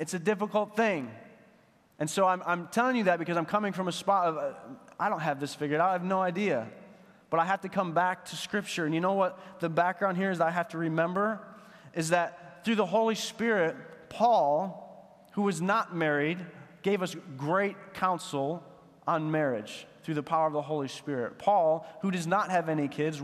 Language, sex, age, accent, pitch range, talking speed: English, male, 30-49, American, 135-180 Hz, 205 wpm